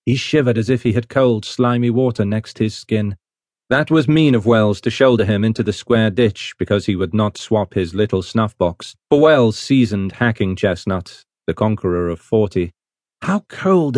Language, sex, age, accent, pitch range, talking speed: English, male, 40-59, British, 105-140 Hz, 190 wpm